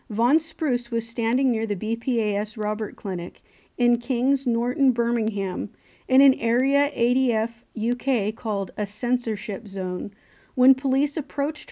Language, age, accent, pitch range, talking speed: English, 40-59, American, 210-260 Hz, 130 wpm